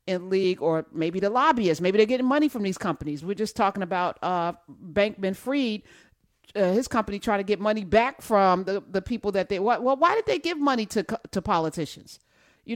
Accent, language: American, English